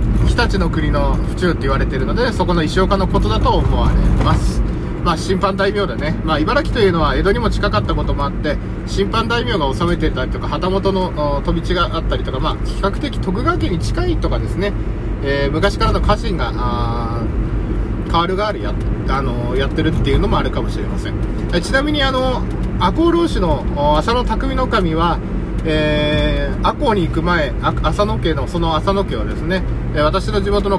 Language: Japanese